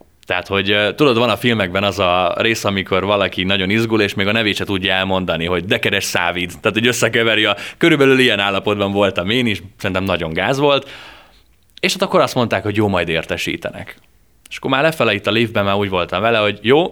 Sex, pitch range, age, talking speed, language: male, 90-120 Hz, 20-39, 215 wpm, Hungarian